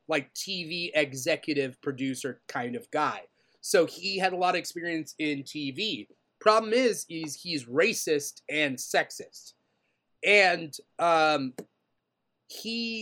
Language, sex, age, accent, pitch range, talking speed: English, male, 30-49, American, 140-185 Hz, 120 wpm